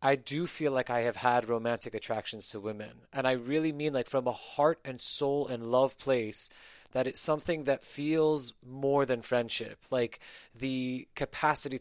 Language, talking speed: English, 180 wpm